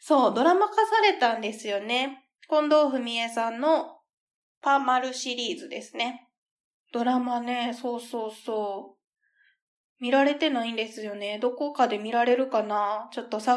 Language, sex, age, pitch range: Japanese, female, 20-39, 235-315 Hz